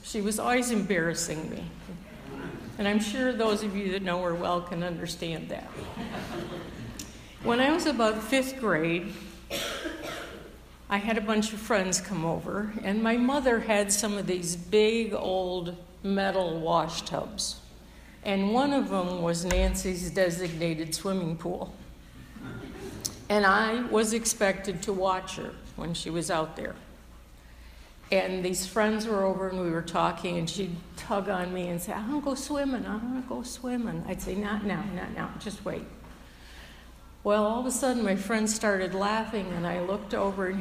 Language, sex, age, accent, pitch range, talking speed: English, female, 60-79, American, 175-215 Hz, 165 wpm